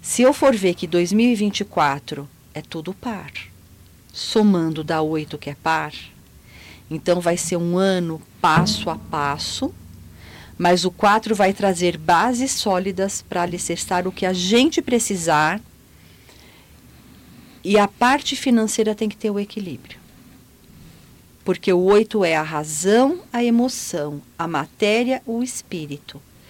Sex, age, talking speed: female, 40-59, 130 wpm